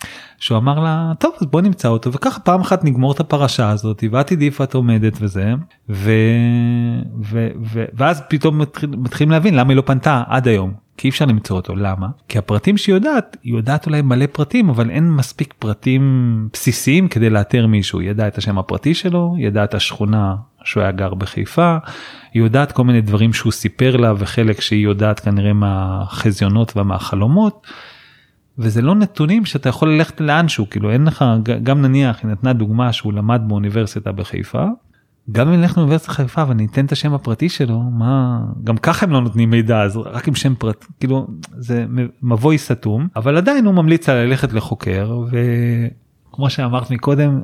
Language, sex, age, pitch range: Hebrew, male, 30-49, 110-150 Hz